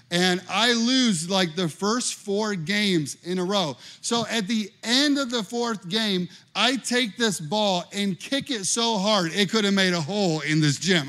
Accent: American